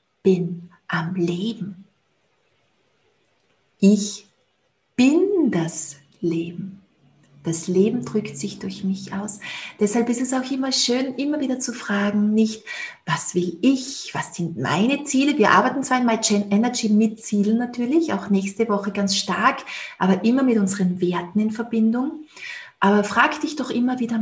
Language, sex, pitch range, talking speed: German, female, 195-245 Hz, 145 wpm